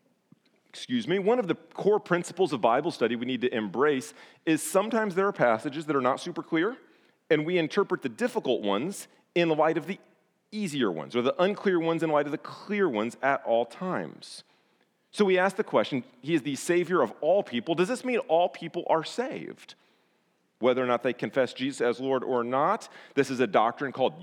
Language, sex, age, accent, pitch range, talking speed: English, male, 40-59, American, 110-180 Hz, 205 wpm